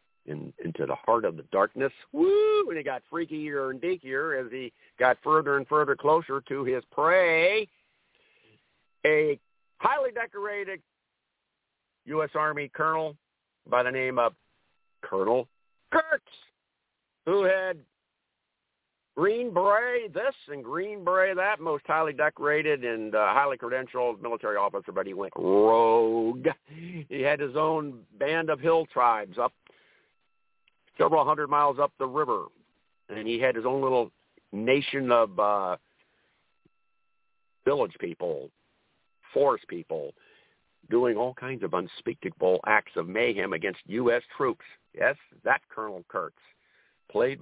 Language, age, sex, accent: English, 50-69, male, American